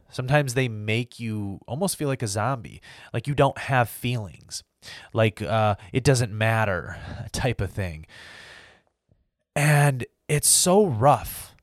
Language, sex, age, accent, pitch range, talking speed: English, male, 20-39, American, 100-130 Hz, 135 wpm